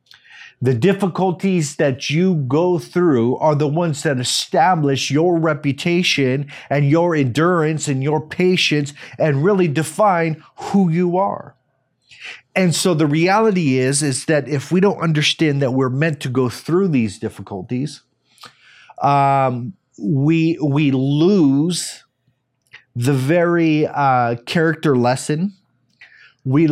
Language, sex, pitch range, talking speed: English, male, 135-170 Hz, 120 wpm